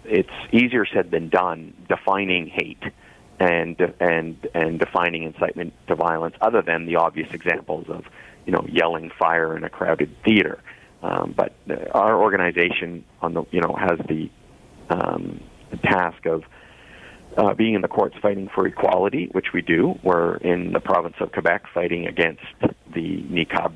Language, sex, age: English, male, 40-59